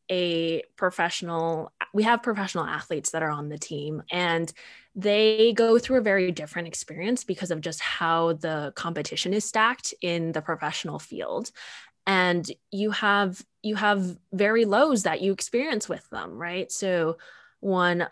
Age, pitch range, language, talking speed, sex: 20-39, 160-195 Hz, English, 150 wpm, female